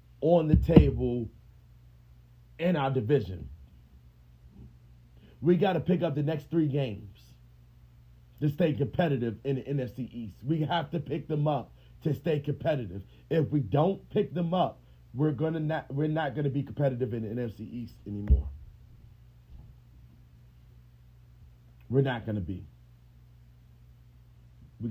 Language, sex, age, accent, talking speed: English, male, 30-49, American, 130 wpm